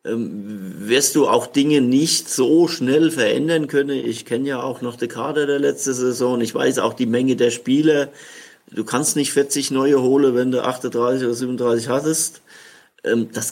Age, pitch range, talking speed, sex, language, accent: 50-69, 115-140 Hz, 175 wpm, male, German, German